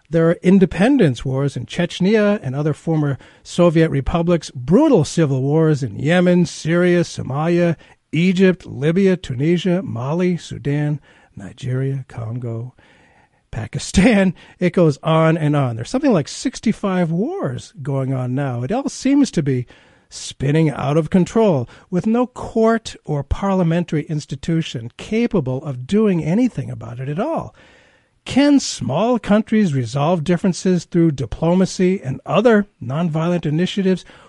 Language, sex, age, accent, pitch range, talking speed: English, male, 50-69, American, 140-190 Hz, 130 wpm